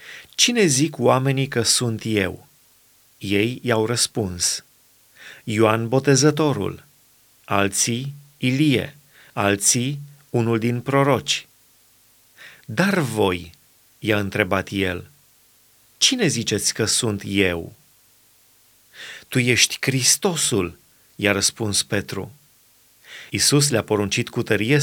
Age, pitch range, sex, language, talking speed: 30-49, 110-140 Hz, male, Romanian, 90 wpm